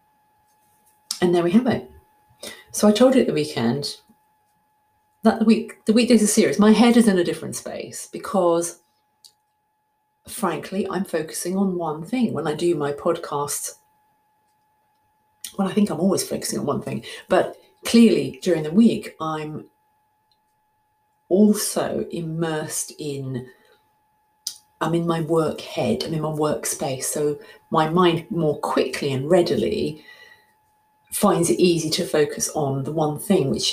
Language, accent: English, British